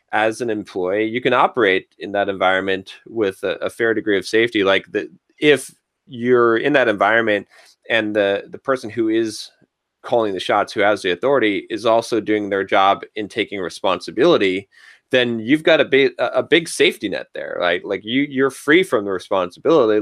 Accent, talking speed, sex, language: American, 185 wpm, male, English